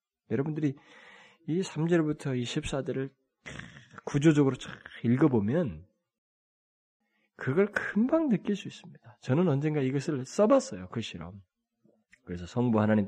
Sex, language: male, Korean